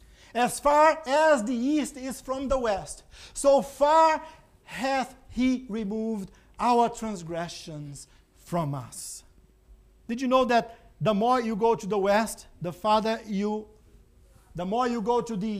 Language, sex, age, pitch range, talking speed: English, male, 50-69, 190-250 Hz, 145 wpm